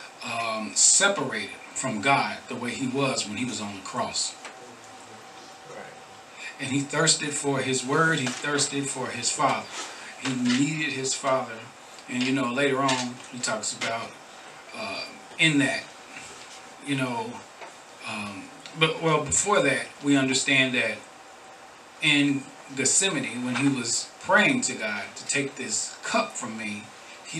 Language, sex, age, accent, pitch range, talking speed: English, male, 40-59, American, 125-140 Hz, 140 wpm